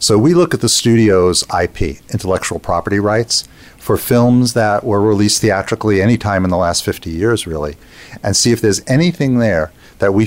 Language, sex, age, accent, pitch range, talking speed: English, male, 50-69, American, 95-120 Hz, 180 wpm